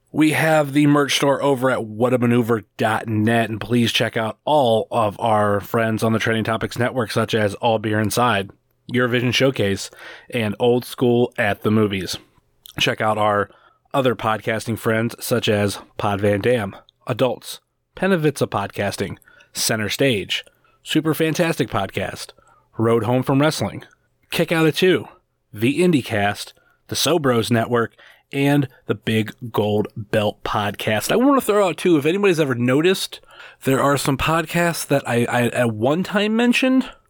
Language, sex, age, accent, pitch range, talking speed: English, male, 30-49, American, 110-145 Hz, 150 wpm